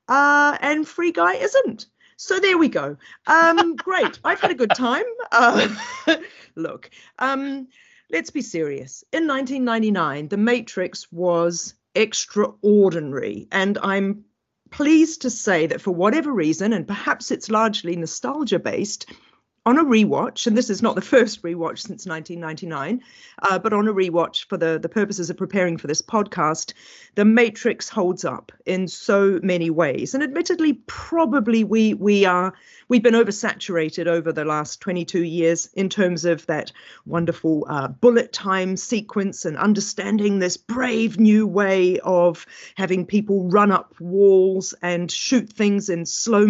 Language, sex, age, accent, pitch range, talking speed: English, female, 50-69, British, 170-235 Hz, 145 wpm